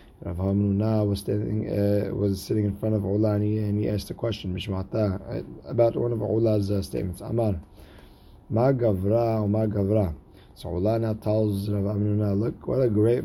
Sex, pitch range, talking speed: male, 95-110 Hz, 135 wpm